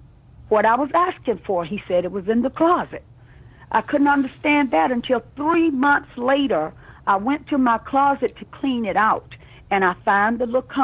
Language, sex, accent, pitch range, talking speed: English, female, American, 205-270 Hz, 175 wpm